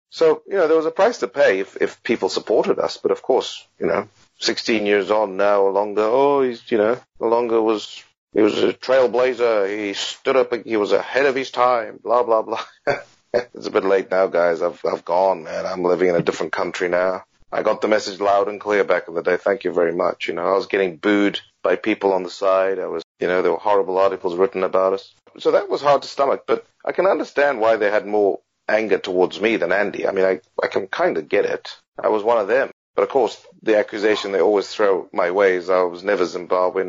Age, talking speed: 30-49, 240 wpm